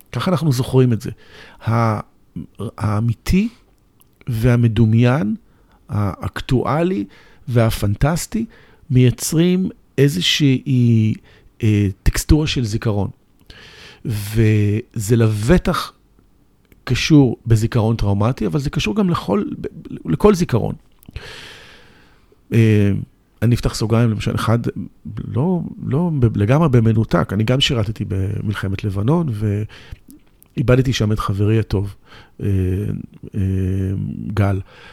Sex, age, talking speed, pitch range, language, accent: male, 50-69, 80 wpm, 100-130 Hz, Hebrew, native